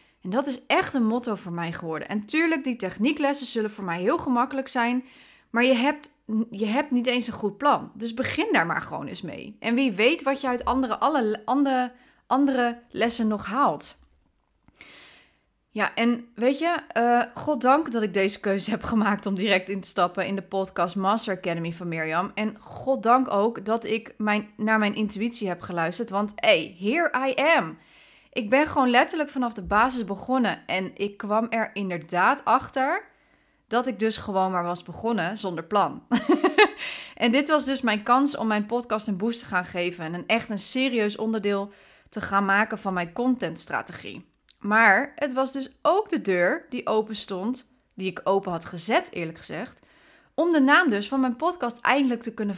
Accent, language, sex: Dutch, Dutch, female